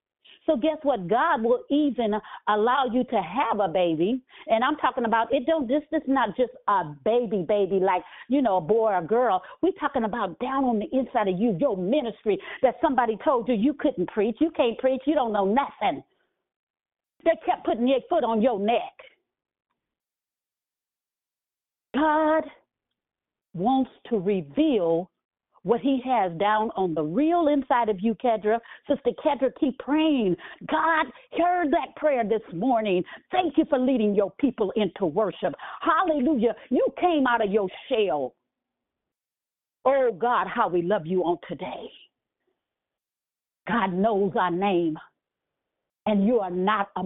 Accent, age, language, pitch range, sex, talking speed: American, 50-69, English, 210-285 Hz, female, 155 wpm